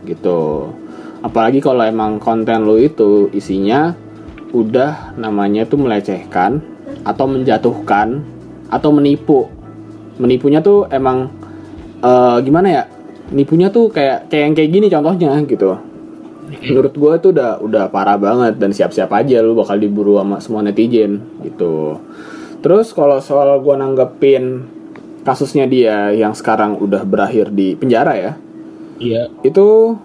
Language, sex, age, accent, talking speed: Indonesian, male, 20-39, native, 125 wpm